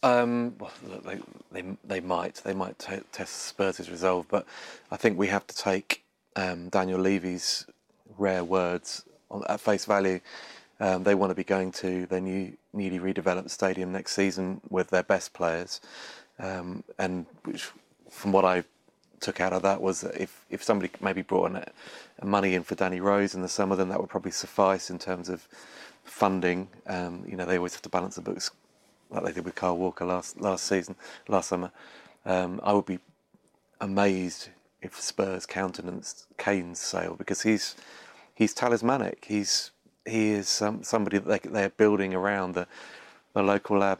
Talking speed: 175 wpm